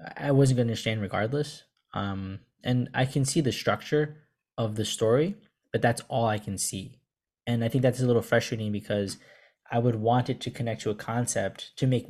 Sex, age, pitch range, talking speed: male, 10-29, 110-130 Hz, 200 wpm